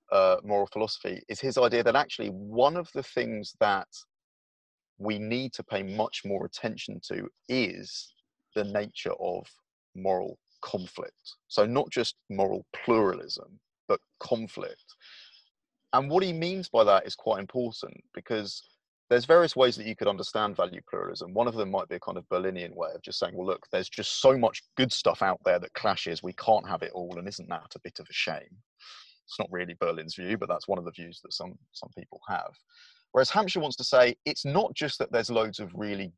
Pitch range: 100-145 Hz